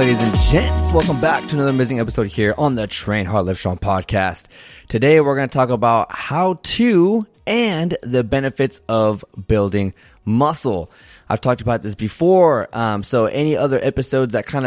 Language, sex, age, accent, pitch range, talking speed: English, male, 20-39, American, 110-140 Hz, 175 wpm